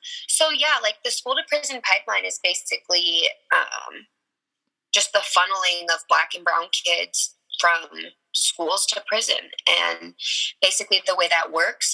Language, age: English, 10-29